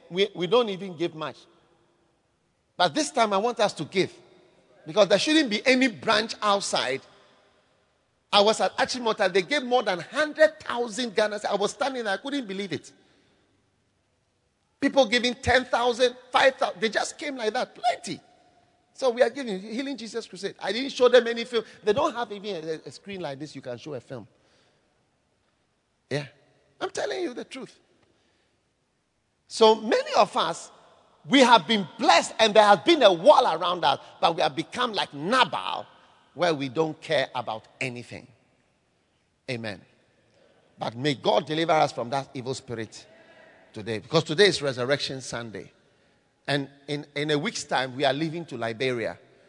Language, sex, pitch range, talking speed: English, male, 145-245 Hz, 165 wpm